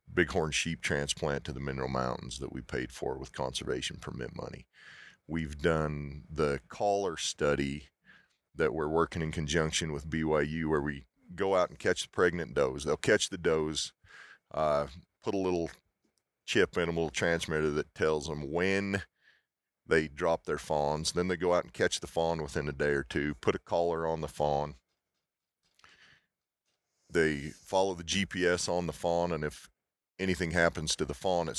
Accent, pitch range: American, 75-85 Hz